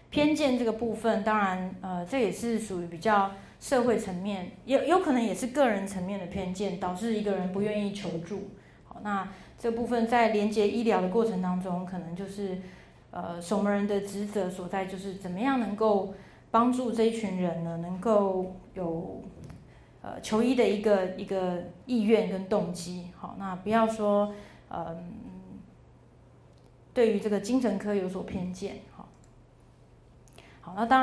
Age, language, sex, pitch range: 30-49, Chinese, female, 190-225 Hz